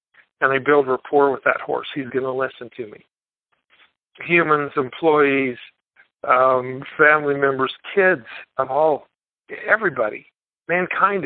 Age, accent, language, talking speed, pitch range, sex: 50-69, American, English, 125 wpm, 130-155 Hz, male